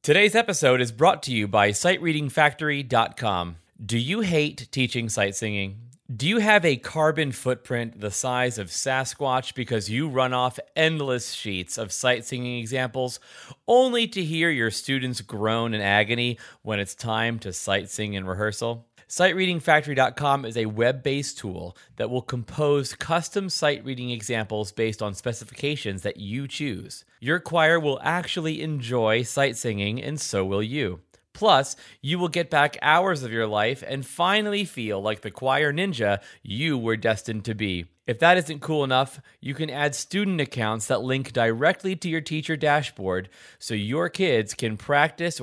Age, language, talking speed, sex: 30-49, English, 160 wpm, male